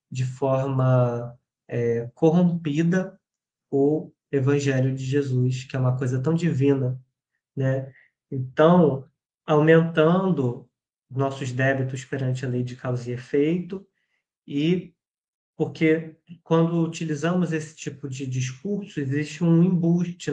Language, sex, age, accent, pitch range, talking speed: Portuguese, male, 20-39, Brazilian, 130-160 Hz, 105 wpm